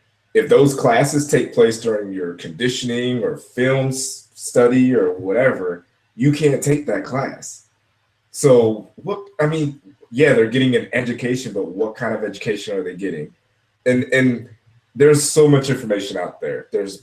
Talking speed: 155 wpm